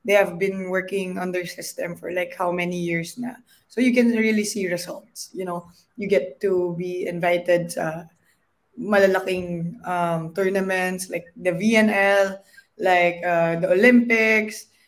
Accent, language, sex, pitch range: native, Filipino, female, 185-235 Hz